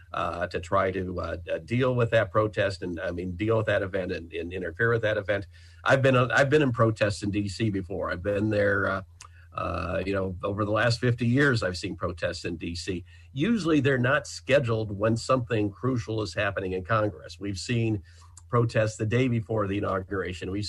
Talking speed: 205 wpm